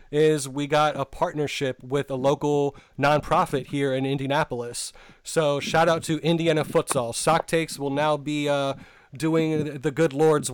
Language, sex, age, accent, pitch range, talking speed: English, male, 30-49, American, 140-165 Hz, 160 wpm